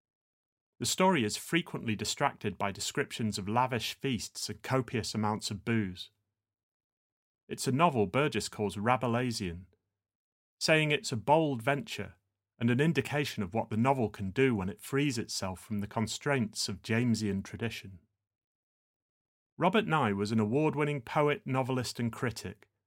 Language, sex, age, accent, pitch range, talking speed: English, male, 30-49, British, 105-130 Hz, 140 wpm